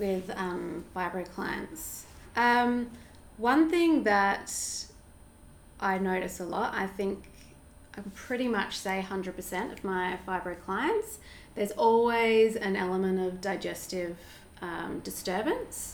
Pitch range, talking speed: 175-210 Hz, 115 wpm